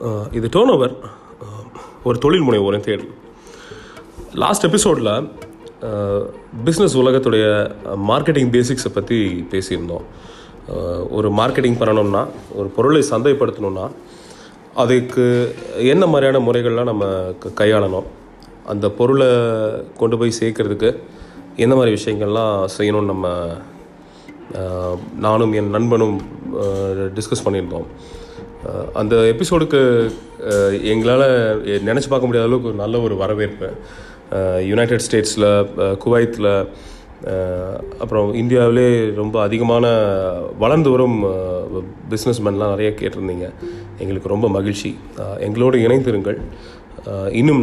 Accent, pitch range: native, 100-125 Hz